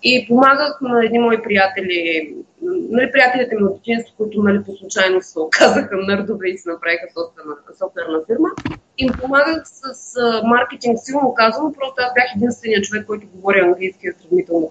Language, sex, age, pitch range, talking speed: Bulgarian, female, 20-39, 195-255 Hz, 175 wpm